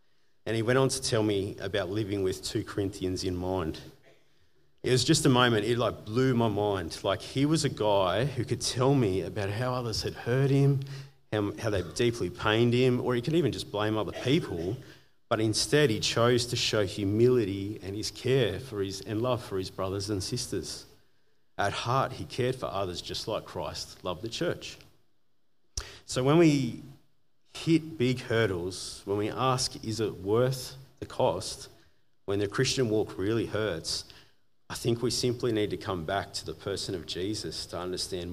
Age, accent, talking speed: 40-59, Australian, 185 wpm